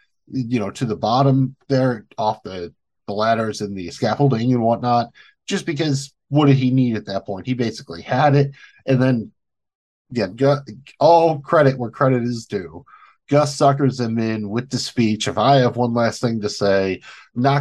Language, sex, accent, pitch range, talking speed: English, male, American, 105-135 Hz, 180 wpm